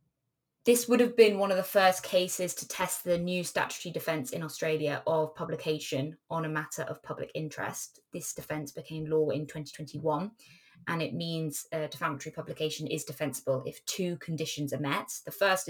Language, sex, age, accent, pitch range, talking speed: English, female, 20-39, British, 145-160 Hz, 175 wpm